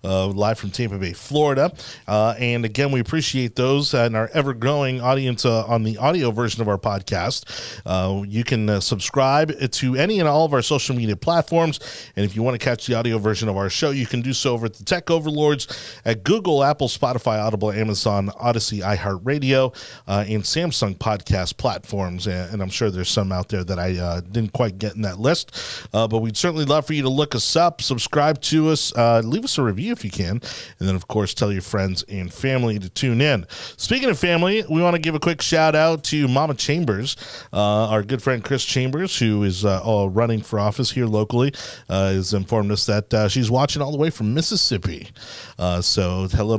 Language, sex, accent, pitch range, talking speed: English, male, American, 105-145 Hz, 215 wpm